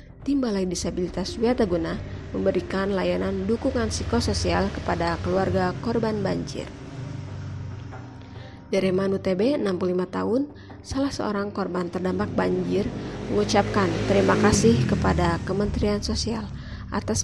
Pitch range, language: 125-215 Hz, Indonesian